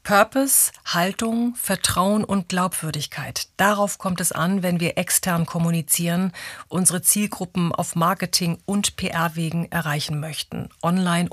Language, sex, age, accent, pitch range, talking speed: German, female, 40-59, German, 170-200 Hz, 115 wpm